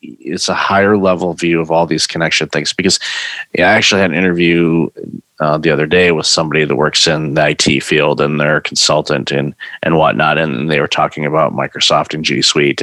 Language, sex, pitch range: English, male, 80-100 Hz